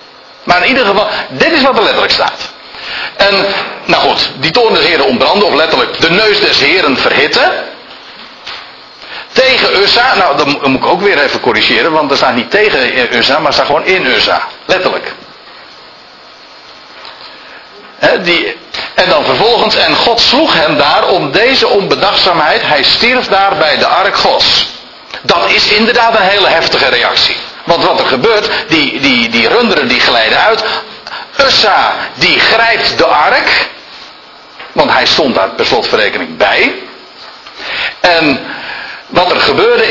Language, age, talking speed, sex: Dutch, 60-79, 155 wpm, male